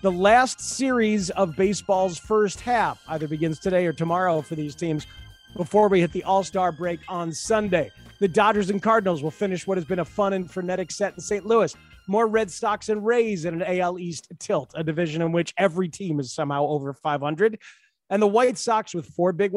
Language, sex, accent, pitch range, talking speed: English, male, American, 160-215 Hz, 210 wpm